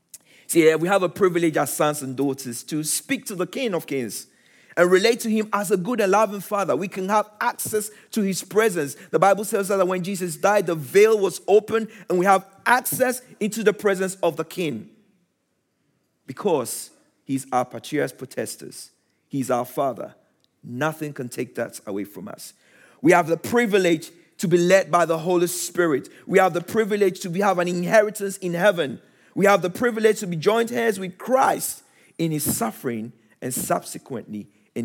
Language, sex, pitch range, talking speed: English, male, 135-200 Hz, 185 wpm